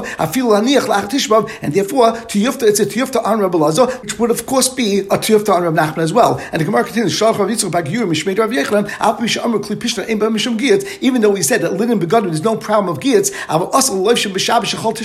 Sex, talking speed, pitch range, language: male, 150 wpm, 195-240 Hz, English